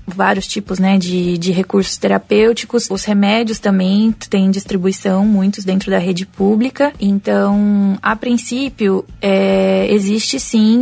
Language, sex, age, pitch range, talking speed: Portuguese, female, 20-39, 185-210 Hz, 120 wpm